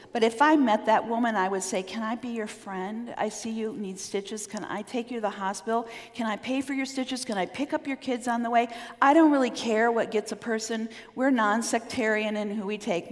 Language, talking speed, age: English, 250 wpm, 50-69